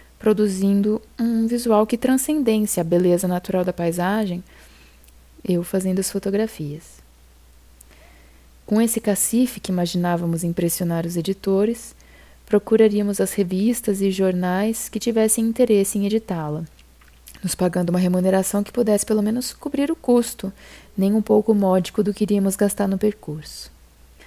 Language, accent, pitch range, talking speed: Portuguese, Brazilian, 175-220 Hz, 130 wpm